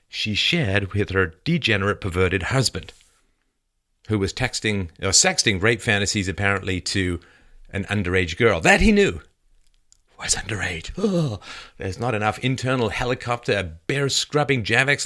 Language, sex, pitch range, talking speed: English, male, 95-135 Hz, 130 wpm